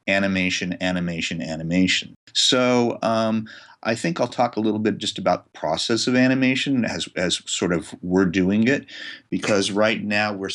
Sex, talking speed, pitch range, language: male, 165 wpm, 90-110 Hz, English